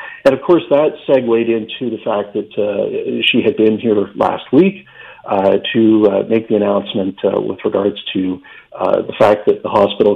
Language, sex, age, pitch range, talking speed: English, male, 50-69, 105-145 Hz, 190 wpm